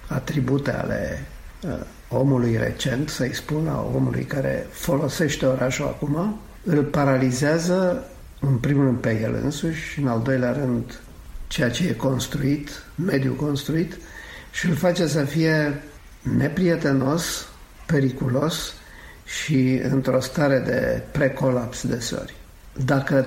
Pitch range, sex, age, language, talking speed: 125-145 Hz, male, 50-69, Romanian, 120 wpm